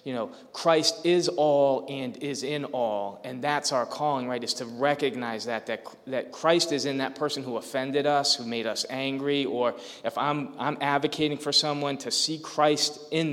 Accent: American